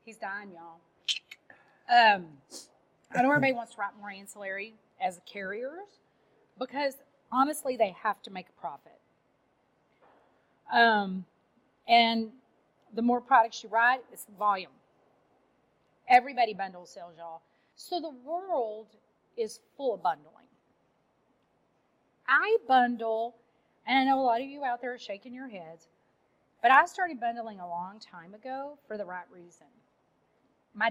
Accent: American